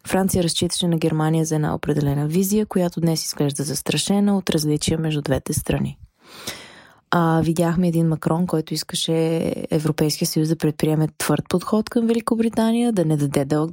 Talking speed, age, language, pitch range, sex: 155 wpm, 20-39, Bulgarian, 160-195 Hz, female